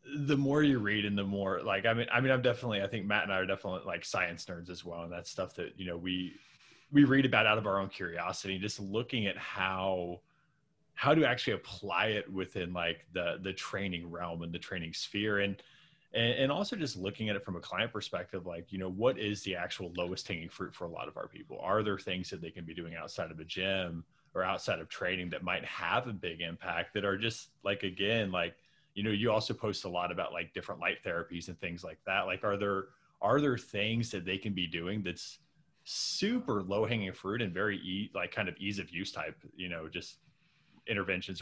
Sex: male